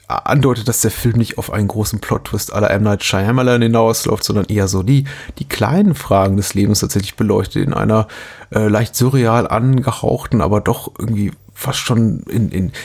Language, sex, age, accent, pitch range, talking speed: German, male, 30-49, German, 105-125 Hz, 180 wpm